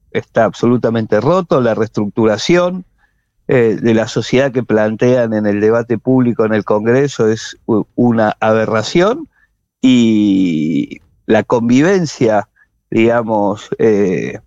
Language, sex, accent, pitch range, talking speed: Spanish, male, Argentinian, 110-140 Hz, 110 wpm